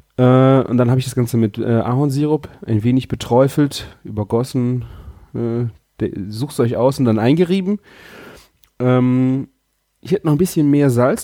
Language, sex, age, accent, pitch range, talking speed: German, male, 30-49, German, 105-130 Hz, 135 wpm